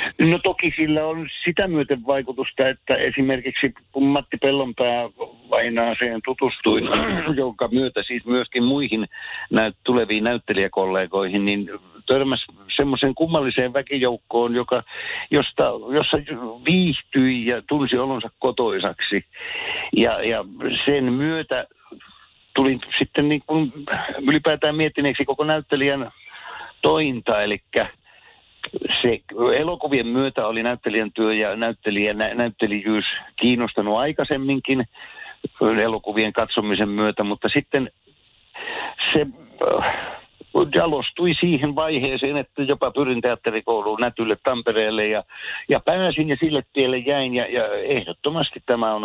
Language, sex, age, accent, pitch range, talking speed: Finnish, male, 60-79, native, 115-145 Hz, 105 wpm